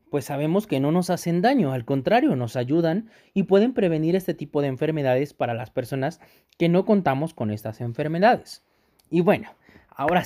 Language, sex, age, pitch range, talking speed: Spanish, male, 30-49, 120-175 Hz, 175 wpm